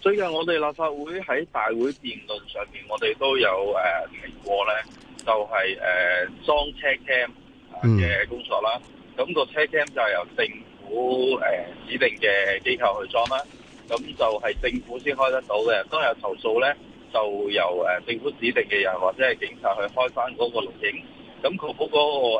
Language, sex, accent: Chinese, male, native